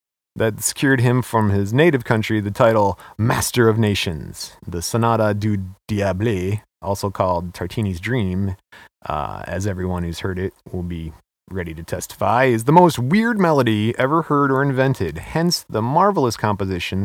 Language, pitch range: English, 95-120 Hz